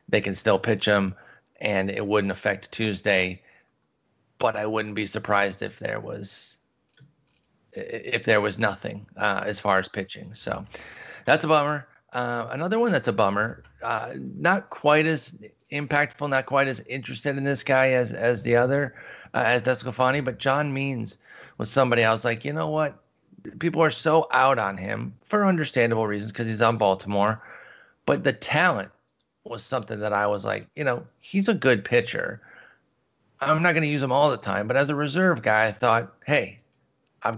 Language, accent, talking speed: English, American, 180 wpm